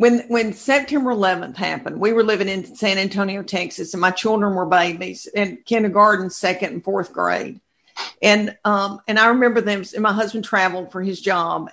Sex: female